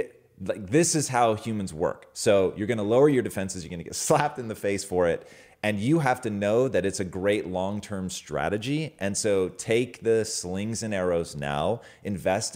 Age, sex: 30-49, male